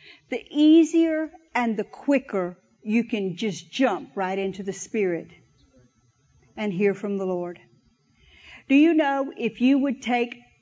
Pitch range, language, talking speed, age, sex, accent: 225-315 Hz, English, 140 wpm, 50-69, female, American